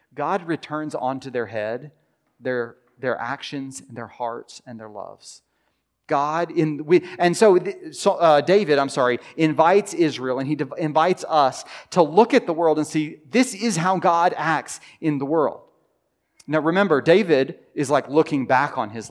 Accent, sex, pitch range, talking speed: American, male, 130-180 Hz, 175 wpm